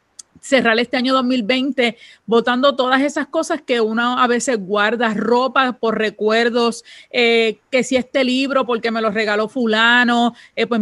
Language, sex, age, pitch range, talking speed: Spanish, female, 30-49, 220-255 Hz, 155 wpm